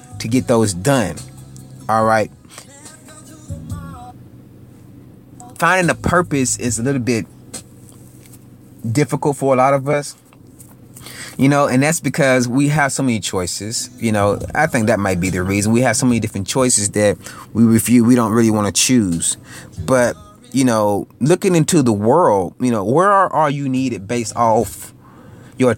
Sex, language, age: male, English, 30-49